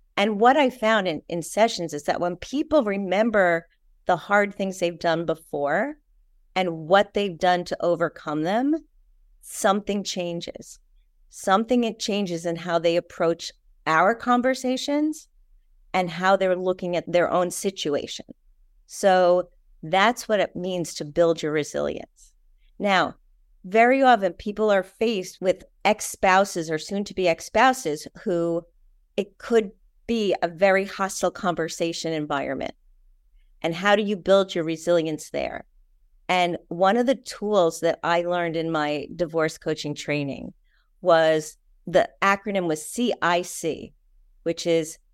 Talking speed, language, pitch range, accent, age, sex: 135 wpm, English, 165-205 Hz, American, 40-59, female